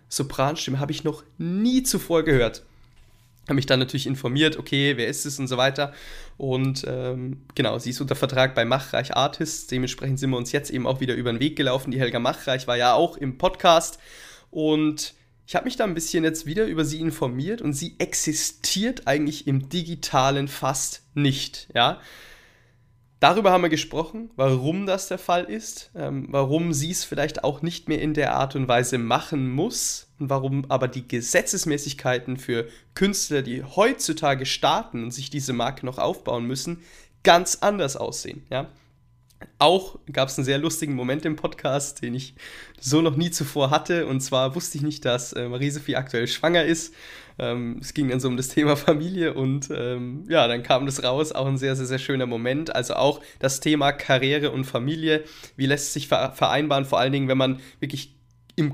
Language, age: German, 20-39